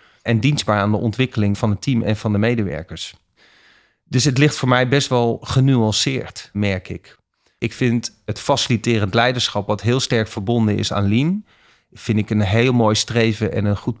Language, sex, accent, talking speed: Dutch, male, Dutch, 185 wpm